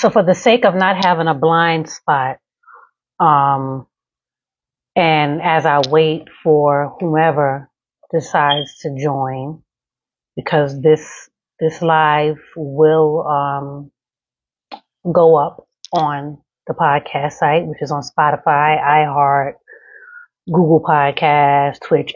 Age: 30-49